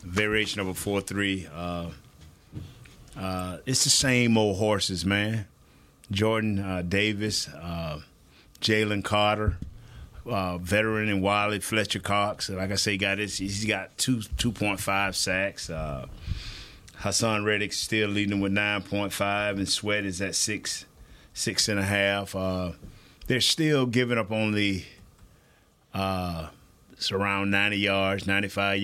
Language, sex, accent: English, male, American